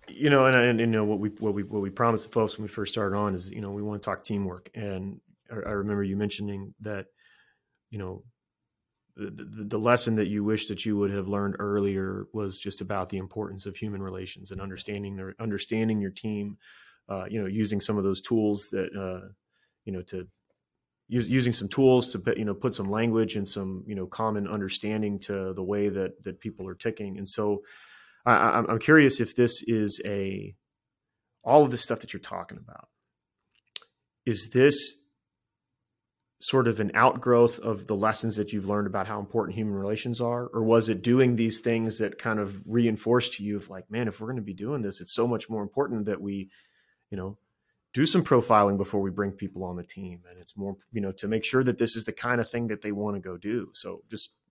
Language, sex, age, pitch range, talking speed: English, male, 30-49, 100-115 Hz, 220 wpm